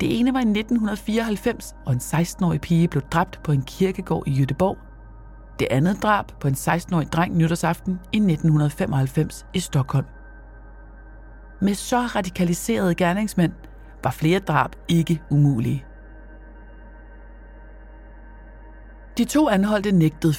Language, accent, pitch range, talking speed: Danish, native, 140-185 Hz, 120 wpm